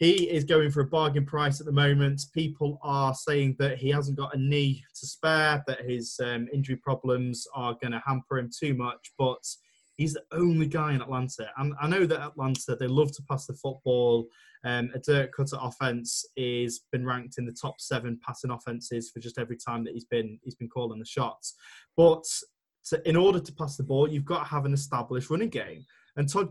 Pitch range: 125-150 Hz